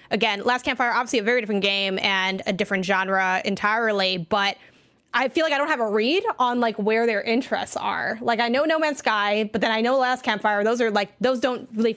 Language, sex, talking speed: English, female, 230 wpm